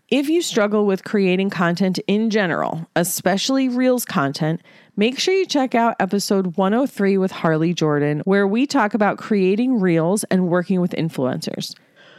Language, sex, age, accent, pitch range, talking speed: English, female, 30-49, American, 185-250 Hz, 155 wpm